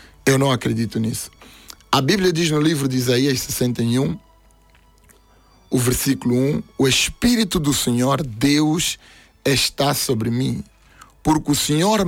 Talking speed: 130 wpm